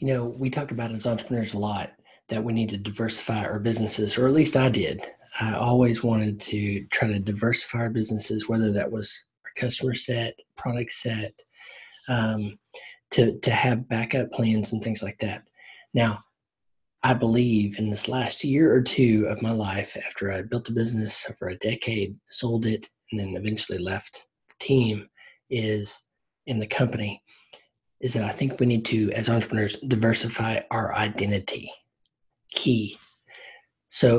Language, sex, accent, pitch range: English, male, American, 110-125 Hz